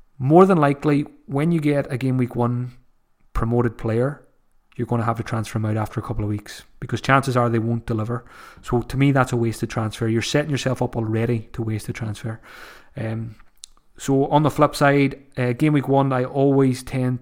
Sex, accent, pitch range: male, British, 115-135 Hz